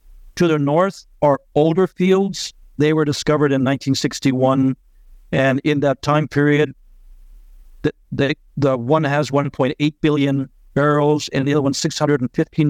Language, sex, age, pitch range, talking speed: English, male, 60-79, 120-145 Hz, 135 wpm